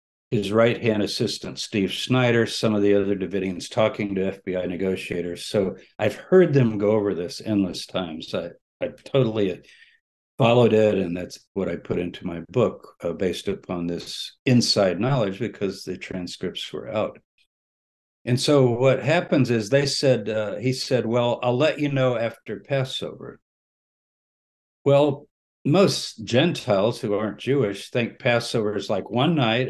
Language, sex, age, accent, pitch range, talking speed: English, male, 60-79, American, 100-130 Hz, 155 wpm